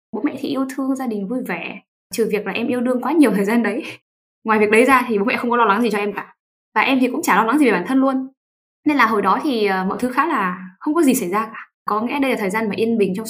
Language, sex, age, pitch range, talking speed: Vietnamese, female, 10-29, 205-265 Hz, 325 wpm